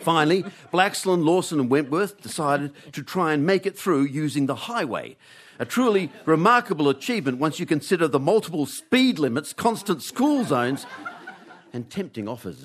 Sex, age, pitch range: male, 50-69, 130-190 Hz